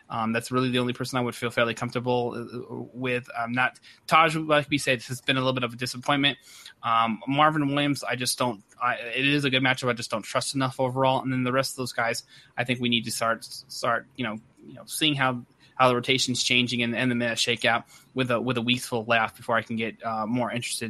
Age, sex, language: 20-39, male, English